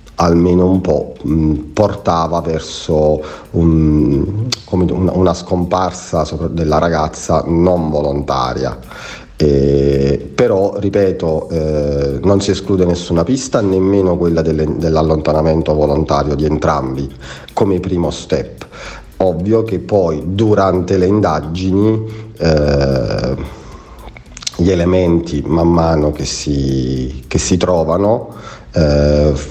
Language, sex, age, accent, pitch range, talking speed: Italian, male, 40-59, native, 75-90 Hz, 105 wpm